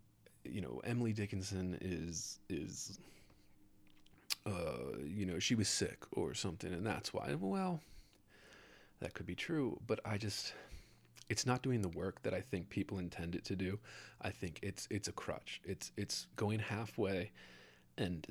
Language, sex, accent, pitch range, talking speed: English, male, American, 85-105 Hz, 160 wpm